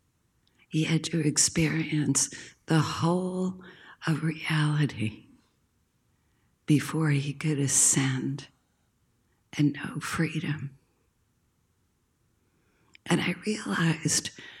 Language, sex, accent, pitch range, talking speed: English, female, American, 120-170 Hz, 75 wpm